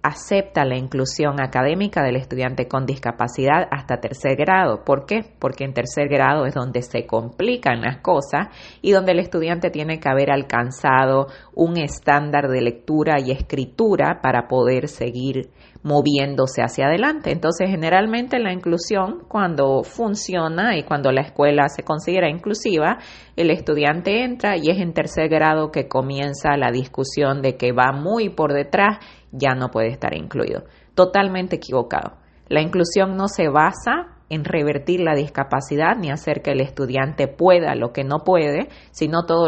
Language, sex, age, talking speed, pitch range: Spanish, female, 30-49, 155 wpm, 135-185 Hz